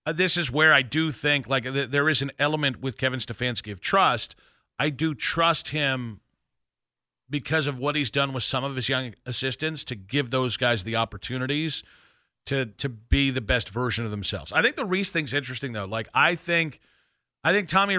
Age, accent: 40-59, American